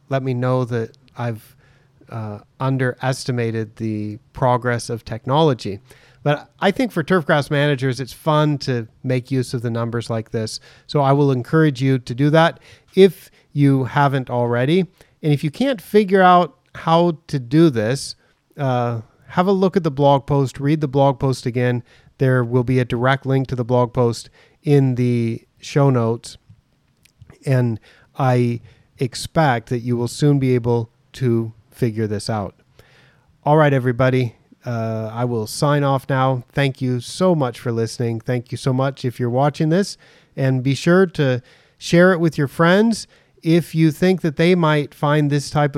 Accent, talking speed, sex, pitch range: American, 170 wpm, male, 120-150 Hz